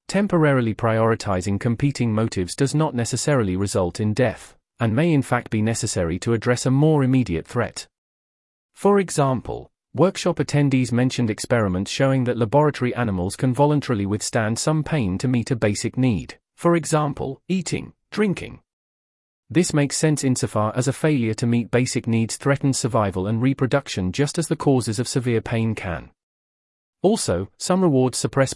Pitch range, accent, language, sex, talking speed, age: 110-140 Hz, British, English, male, 155 wpm, 30-49